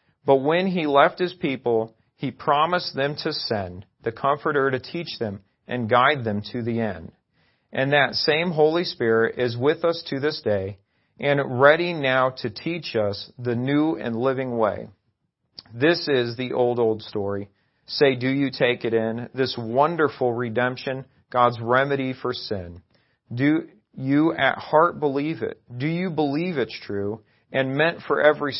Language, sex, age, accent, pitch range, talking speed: English, male, 40-59, American, 115-150 Hz, 165 wpm